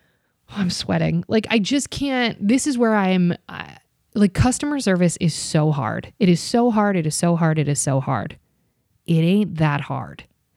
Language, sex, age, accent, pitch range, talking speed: English, female, 20-39, American, 165-205 Hz, 185 wpm